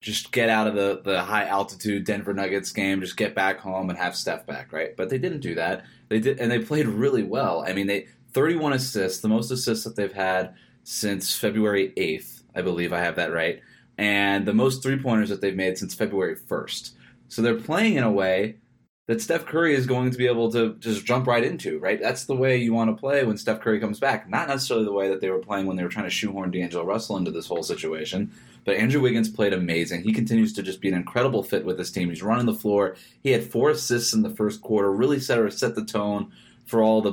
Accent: American